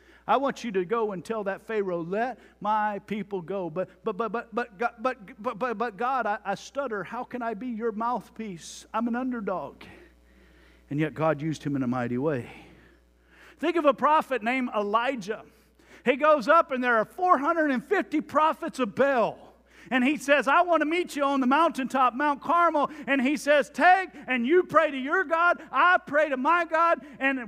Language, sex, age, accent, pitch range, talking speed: English, male, 50-69, American, 165-275 Hz, 190 wpm